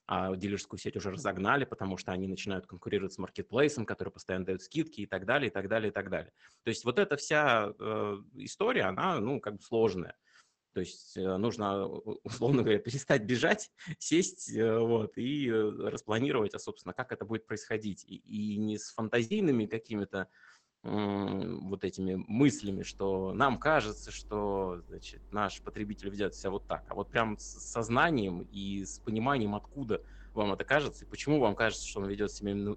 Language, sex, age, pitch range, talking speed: Russian, male, 20-39, 100-115 Hz, 170 wpm